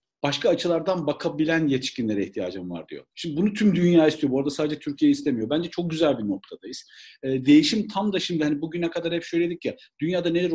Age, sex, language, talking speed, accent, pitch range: 50-69, male, Turkish, 195 wpm, native, 155-210 Hz